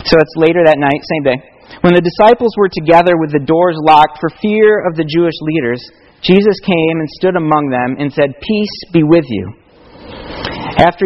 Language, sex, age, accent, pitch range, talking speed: English, male, 40-59, American, 160-200 Hz, 190 wpm